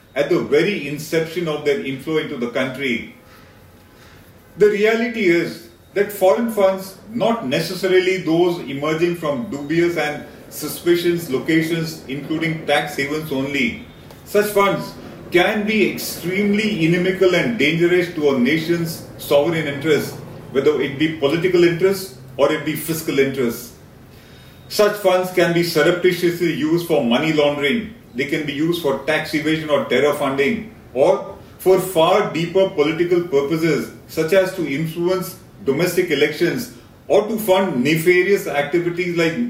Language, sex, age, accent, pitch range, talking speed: English, male, 40-59, Indian, 150-185 Hz, 135 wpm